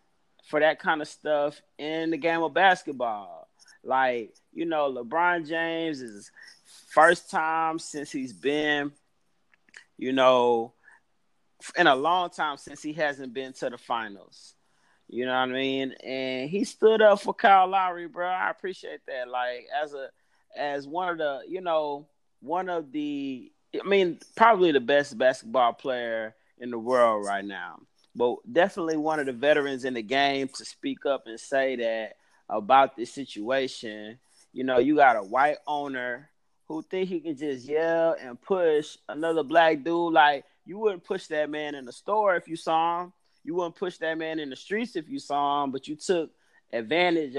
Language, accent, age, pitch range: English, American, 30-49, 130-175 Hz